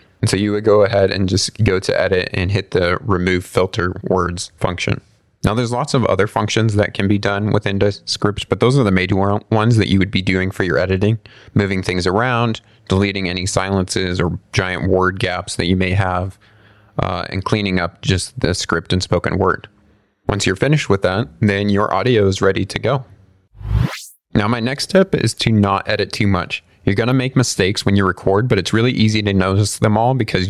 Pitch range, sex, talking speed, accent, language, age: 95-110 Hz, male, 210 wpm, American, English, 30-49